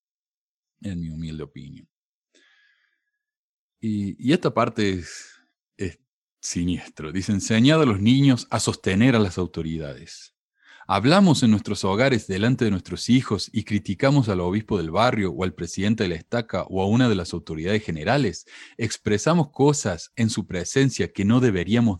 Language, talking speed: Spanish, 155 wpm